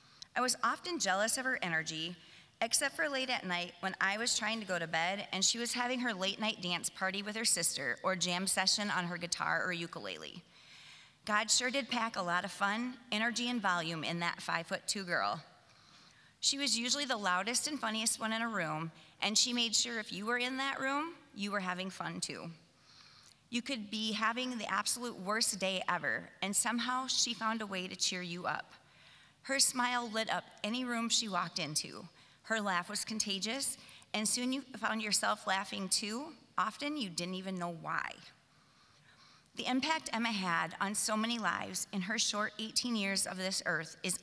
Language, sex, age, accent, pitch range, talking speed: English, female, 30-49, American, 180-235 Hz, 195 wpm